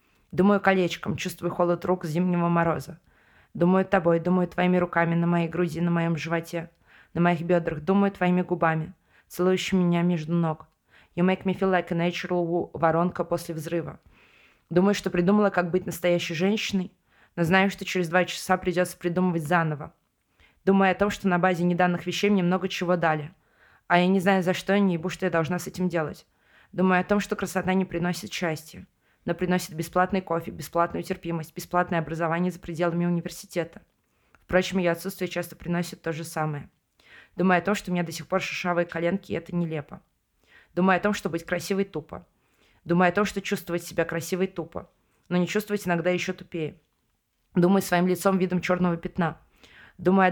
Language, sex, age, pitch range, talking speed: Russian, female, 20-39, 170-185 Hz, 180 wpm